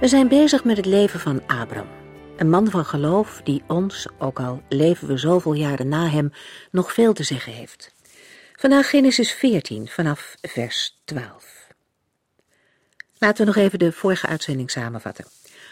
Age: 50-69